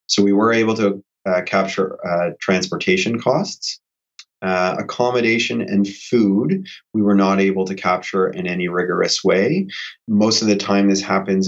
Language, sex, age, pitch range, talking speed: English, male, 30-49, 90-105 Hz, 155 wpm